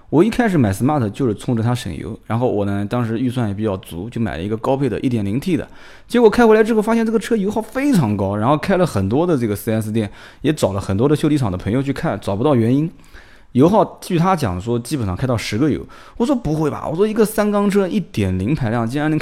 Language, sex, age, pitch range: Chinese, male, 20-39, 105-145 Hz